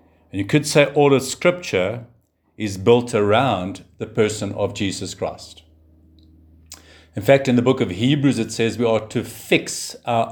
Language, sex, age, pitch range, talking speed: English, male, 50-69, 100-125 Hz, 165 wpm